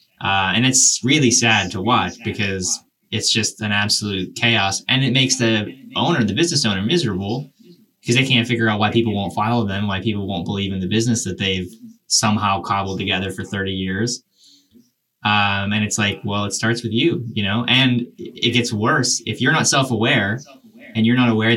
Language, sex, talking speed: English, male, 195 wpm